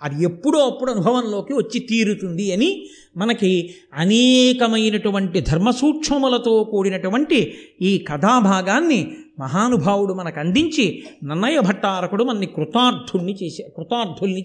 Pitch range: 190-245 Hz